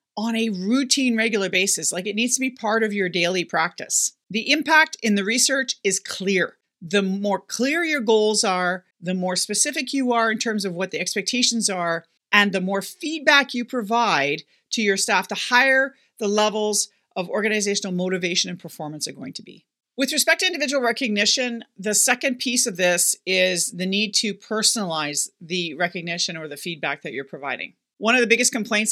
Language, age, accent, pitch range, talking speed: English, 40-59, American, 170-230 Hz, 185 wpm